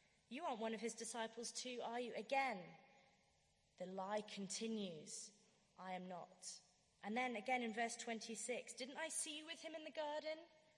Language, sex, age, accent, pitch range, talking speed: English, female, 30-49, British, 185-260 Hz, 175 wpm